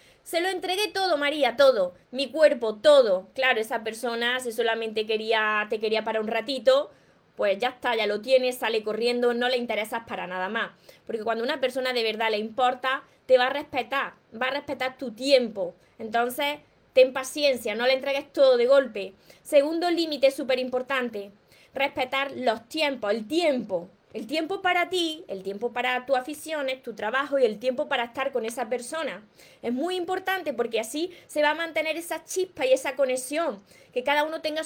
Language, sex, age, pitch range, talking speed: Spanish, female, 20-39, 230-295 Hz, 185 wpm